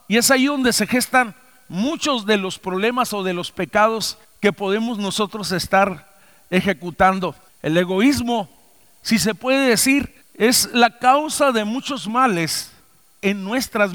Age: 50-69